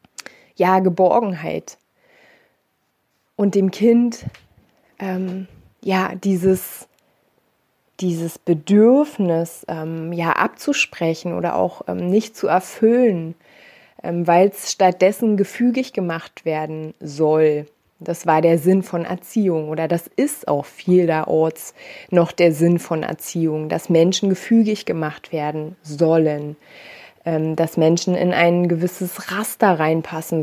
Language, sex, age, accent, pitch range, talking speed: German, female, 20-39, German, 160-195 Hz, 105 wpm